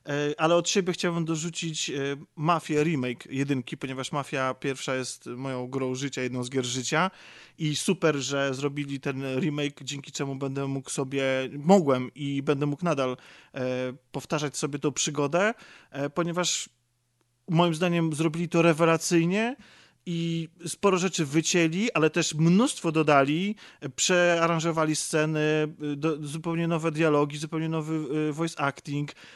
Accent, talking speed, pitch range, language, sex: native, 130 wpm, 140-170 Hz, Polish, male